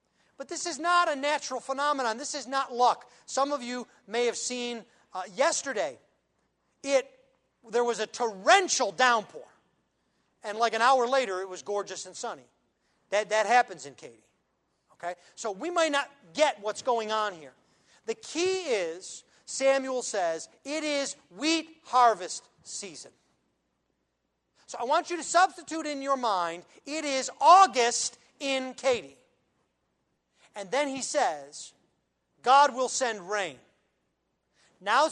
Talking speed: 140 wpm